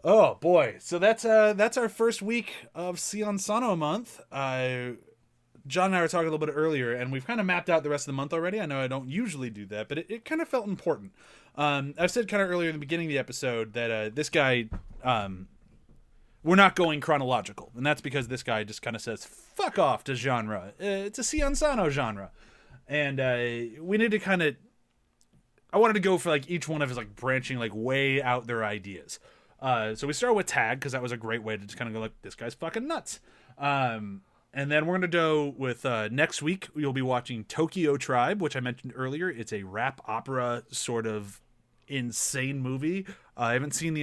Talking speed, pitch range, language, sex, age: 225 wpm, 120-165 Hz, English, male, 30-49